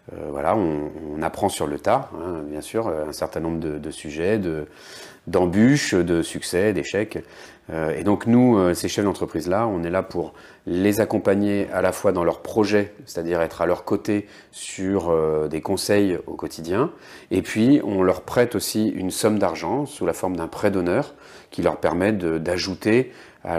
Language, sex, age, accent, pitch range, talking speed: French, male, 30-49, French, 85-100 Hz, 180 wpm